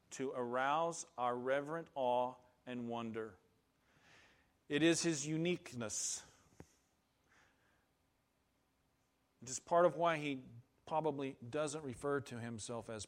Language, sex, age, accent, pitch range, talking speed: English, male, 40-59, American, 115-145 Hz, 105 wpm